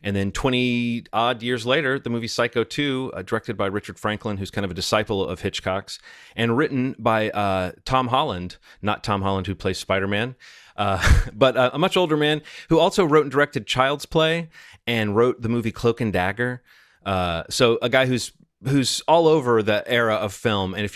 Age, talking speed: 30-49, 195 wpm